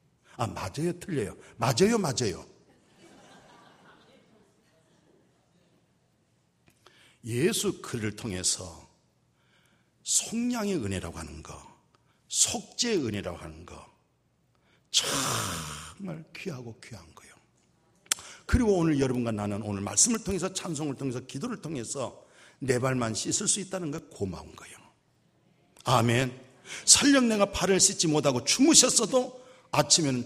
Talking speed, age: 95 wpm, 60-79